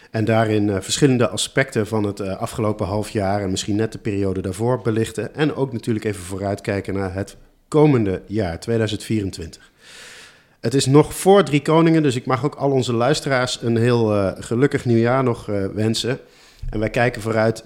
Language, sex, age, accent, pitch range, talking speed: Dutch, male, 50-69, Dutch, 100-120 Hz, 180 wpm